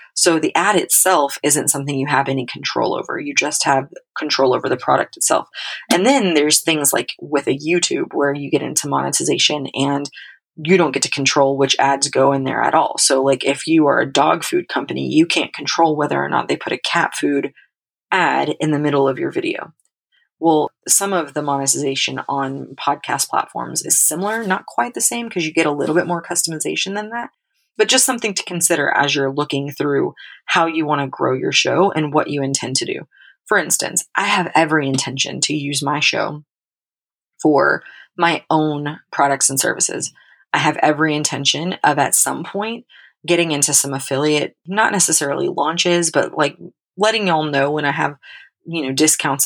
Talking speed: 195 wpm